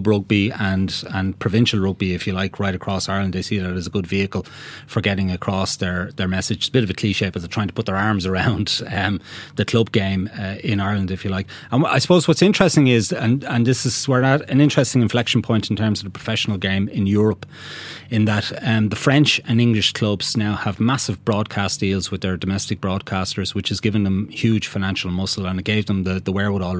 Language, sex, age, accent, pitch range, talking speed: English, male, 30-49, Irish, 95-110 Hz, 230 wpm